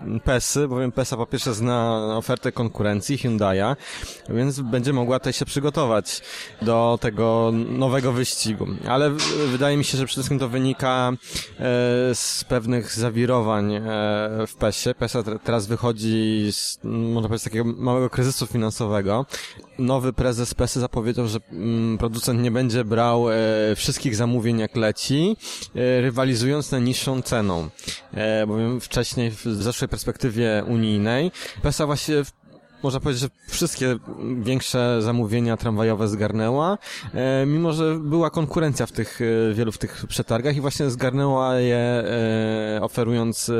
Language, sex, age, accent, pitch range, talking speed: Polish, male, 20-39, native, 110-130 Hz, 125 wpm